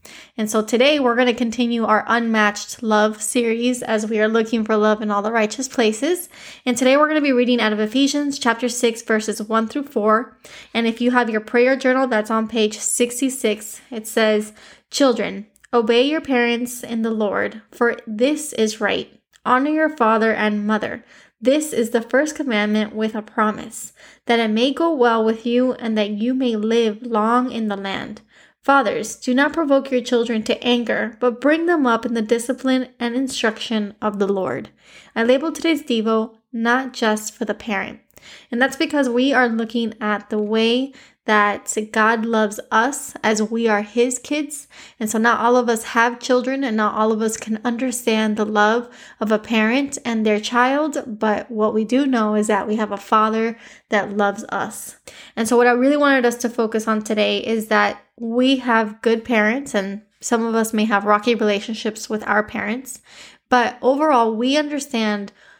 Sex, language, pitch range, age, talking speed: female, English, 215-250 Hz, 10-29, 190 wpm